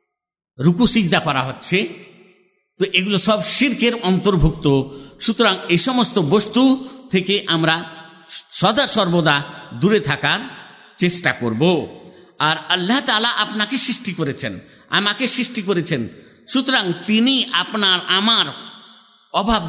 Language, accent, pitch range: Bengali, native, 165-220 Hz